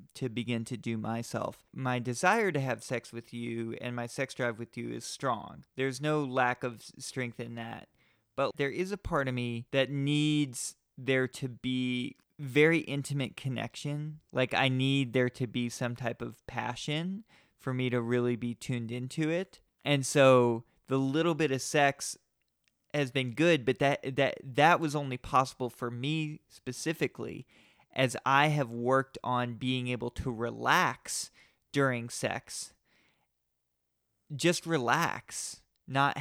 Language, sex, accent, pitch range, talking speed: English, male, American, 120-140 Hz, 155 wpm